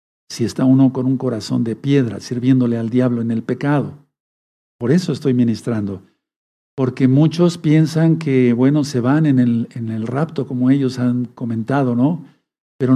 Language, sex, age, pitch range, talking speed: Spanish, male, 50-69, 120-145 Hz, 165 wpm